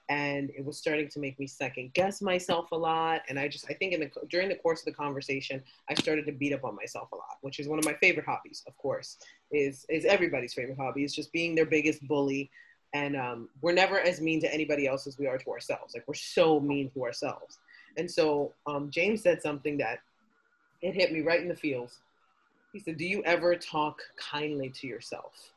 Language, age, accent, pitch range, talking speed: English, 30-49, American, 145-180 Hz, 230 wpm